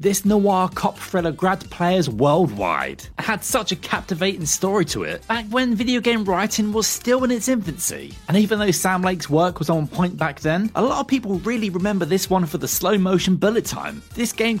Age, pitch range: 30-49, 170-215 Hz